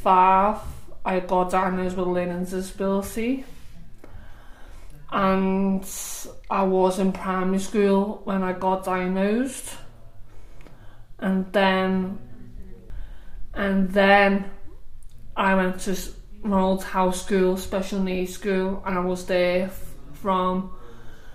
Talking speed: 100 wpm